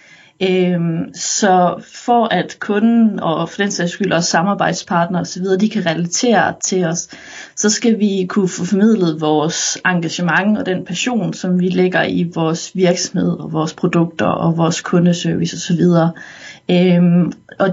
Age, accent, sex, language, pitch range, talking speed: 30-49, native, female, Danish, 170-205 Hz, 150 wpm